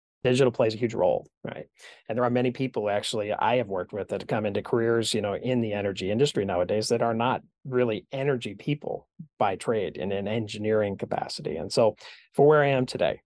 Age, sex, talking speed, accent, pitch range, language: 40-59, male, 210 wpm, American, 105-120 Hz, English